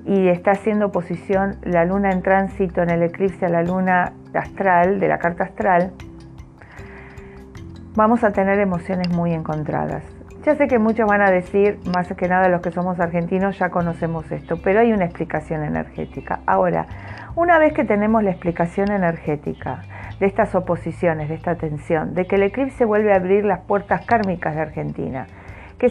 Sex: female